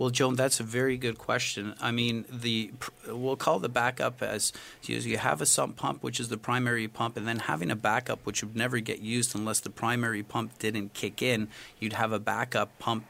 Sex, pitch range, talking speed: male, 105-120 Hz, 215 wpm